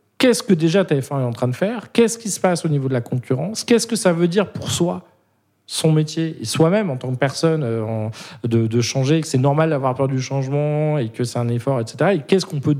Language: French